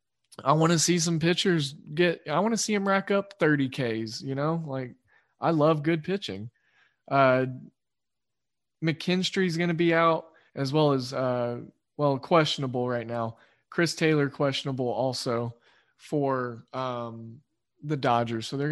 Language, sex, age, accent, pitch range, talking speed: English, male, 20-39, American, 120-160 Hz, 145 wpm